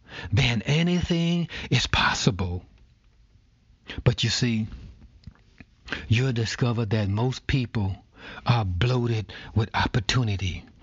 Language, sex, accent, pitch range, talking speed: English, male, American, 110-145 Hz, 90 wpm